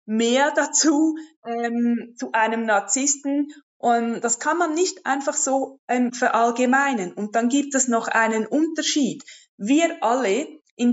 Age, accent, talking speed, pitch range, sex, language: 20-39, German, 135 wpm, 225-270 Hz, female, German